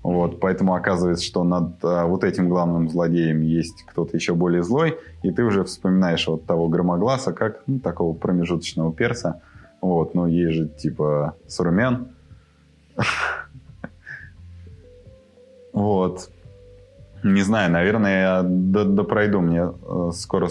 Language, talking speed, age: Russian, 120 wpm, 20-39